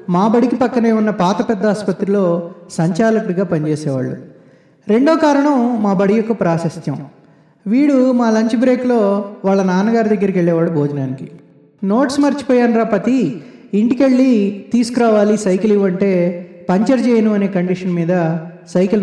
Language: Telugu